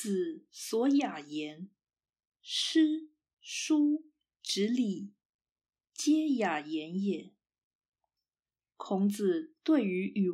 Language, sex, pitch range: Chinese, female, 180-275 Hz